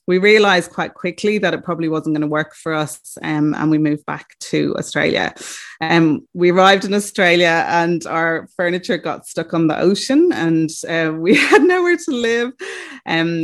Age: 20-39